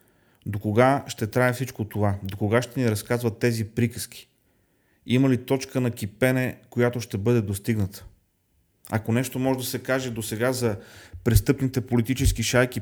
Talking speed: 160 wpm